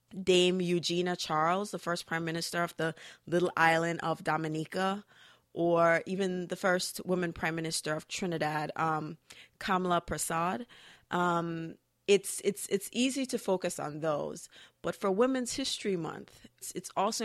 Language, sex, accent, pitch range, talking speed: English, female, American, 155-185 Hz, 145 wpm